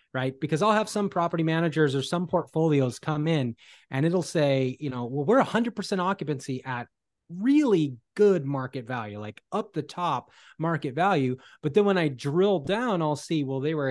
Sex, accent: male, American